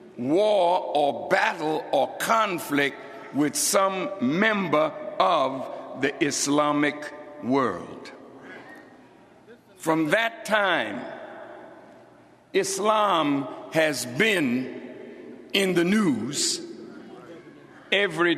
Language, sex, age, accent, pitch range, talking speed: English, male, 60-79, American, 180-255 Hz, 70 wpm